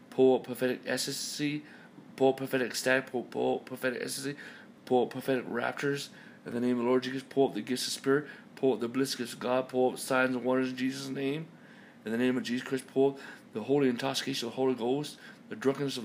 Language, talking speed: English, 215 wpm